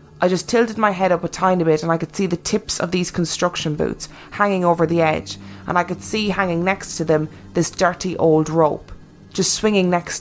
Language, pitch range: English, 160-190 Hz